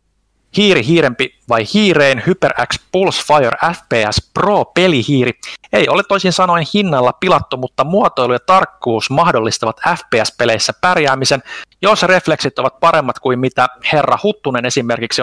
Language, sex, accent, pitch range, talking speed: Finnish, male, native, 120-165 Hz, 125 wpm